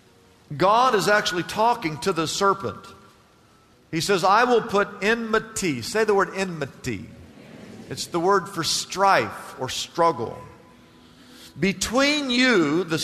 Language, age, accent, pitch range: English, 50-69, American, 165-240 Hz